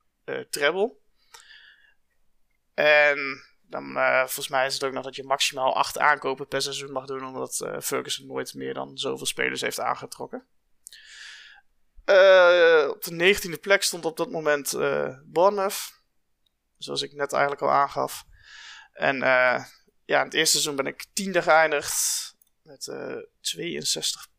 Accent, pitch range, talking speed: Dutch, 145-200 Hz, 150 wpm